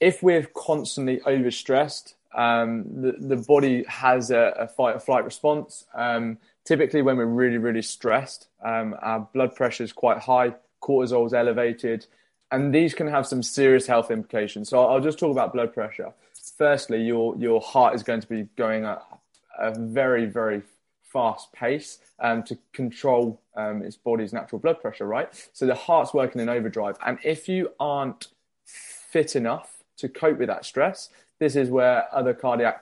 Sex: male